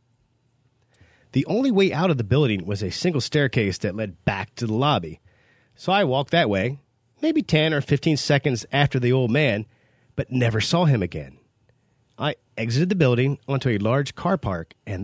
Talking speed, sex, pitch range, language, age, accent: 185 wpm, male, 115-150 Hz, English, 30-49, American